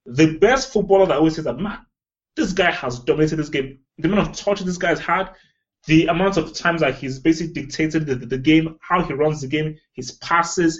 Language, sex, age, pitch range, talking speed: English, male, 20-39, 135-180 Hz, 215 wpm